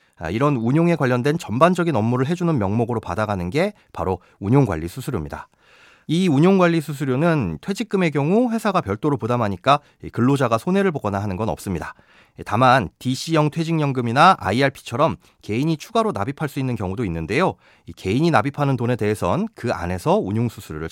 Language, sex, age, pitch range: Korean, male, 30-49, 110-165 Hz